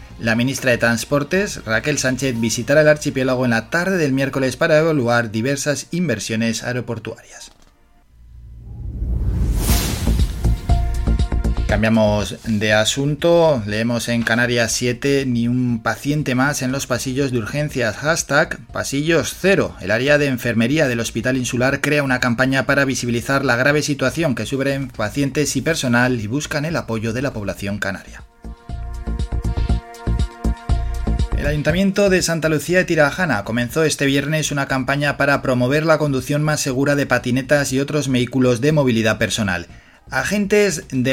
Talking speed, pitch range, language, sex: 135 wpm, 115-145 Hz, Spanish, male